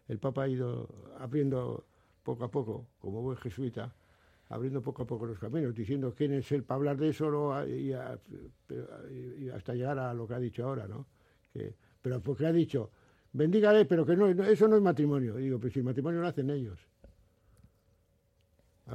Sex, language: male, Spanish